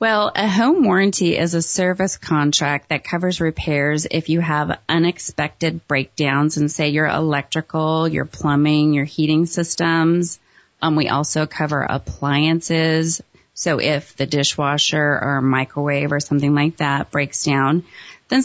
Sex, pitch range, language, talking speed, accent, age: female, 150-175 Hz, English, 140 wpm, American, 30-49